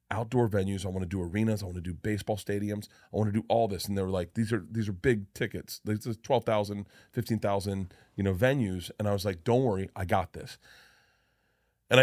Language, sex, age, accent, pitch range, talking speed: English, male, 30-49, American, 110-140 Hz, 230 wpm